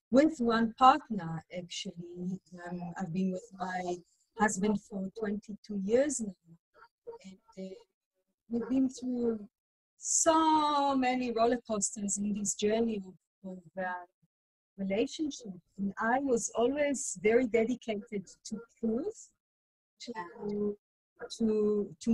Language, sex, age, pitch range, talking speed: English, female, 30-49, 200-240 Hz, 110 wpm